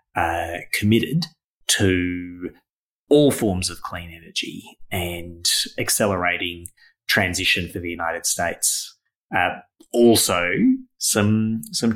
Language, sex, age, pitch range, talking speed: English, male, 30-49, 90-125 Hz, 95 wpm